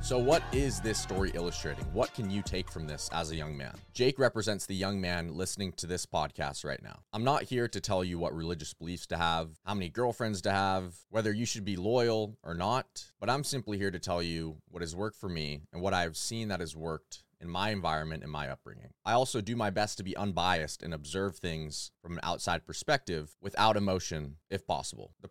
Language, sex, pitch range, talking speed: English, male, 85-110 Hz, 225 wpm